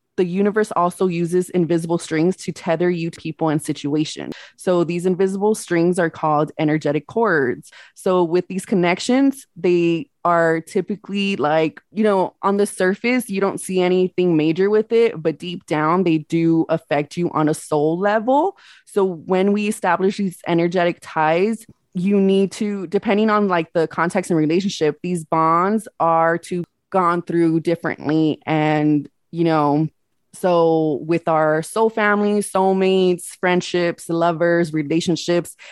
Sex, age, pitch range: female, 20-39, 165-190 Hz